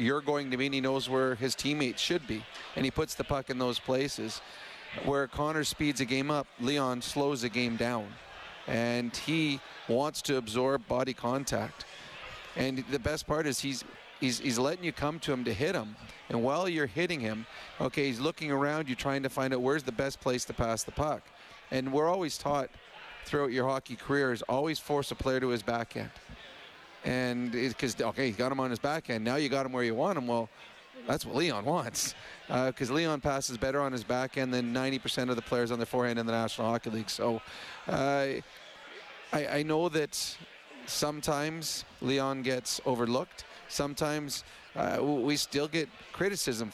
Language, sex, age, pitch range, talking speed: English, male, 30-49, 120-145 Hz, 200 wpm